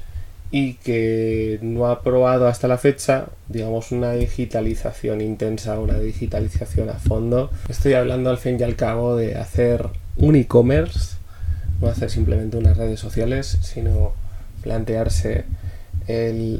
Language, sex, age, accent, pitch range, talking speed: Spanish, male, 20-39, Spanish, 90-120 Hz, 130 wpm